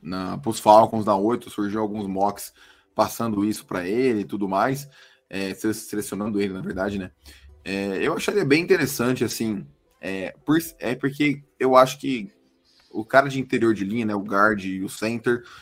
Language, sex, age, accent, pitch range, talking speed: Portuguese, male, 20-39, Brazilian, 100-120 Hz, 175 wpm